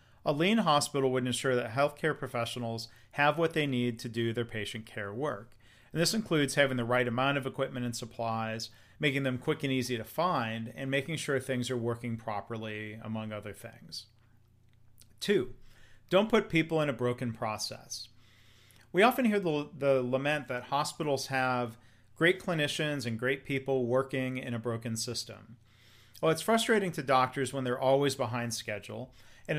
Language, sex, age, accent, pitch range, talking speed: English, male, 40-59, American, 115-145 Hz, 170 wpm